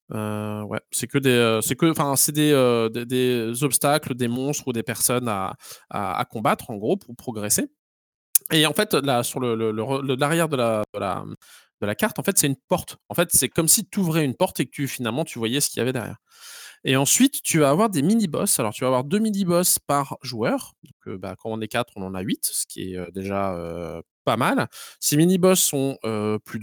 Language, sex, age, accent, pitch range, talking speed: French, male, 20-39, French, 110-155 Hz, 215 wpm